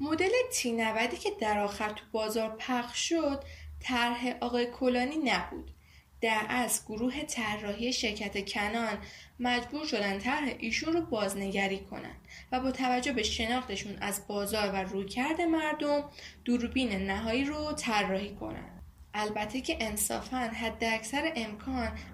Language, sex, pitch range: Persian, female, 205-260 Hz